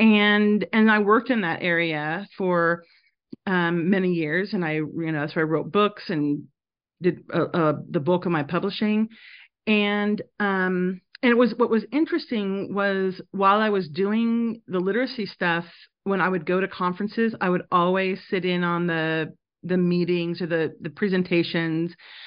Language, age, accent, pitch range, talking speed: English, 40-59, American, 170-210 Hz, 170 wpm